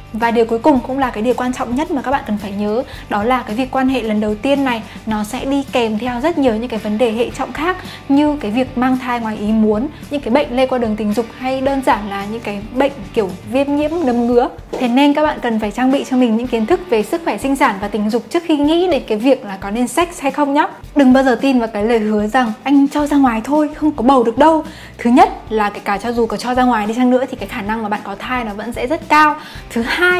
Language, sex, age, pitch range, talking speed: Vietnamese, female, 10-29, 225-280 Hz, 300 wpm